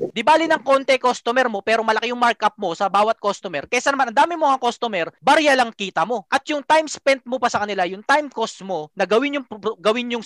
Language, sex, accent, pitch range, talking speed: Filipino, male, native, 195-265 Hz, 240 wpm